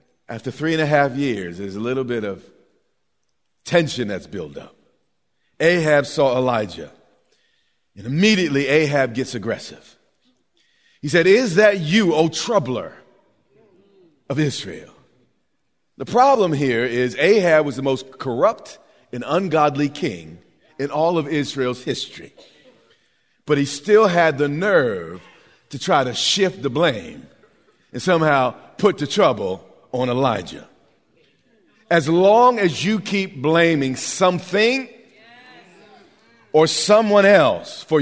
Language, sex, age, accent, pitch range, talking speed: English, male, 40-59, American, 135-175 Hz, 125 wpm